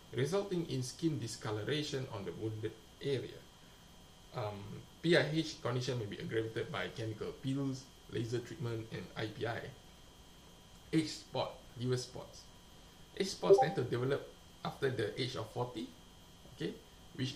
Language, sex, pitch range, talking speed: English, male, 115-150 Hz, 130 wpm